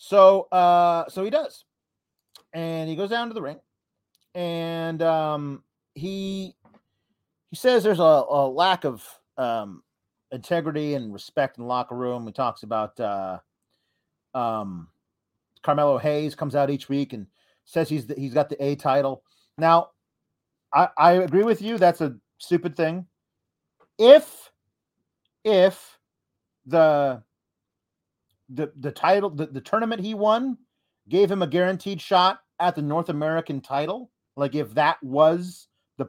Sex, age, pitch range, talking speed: male, 30-49, 140-190 Hz, 140 wpm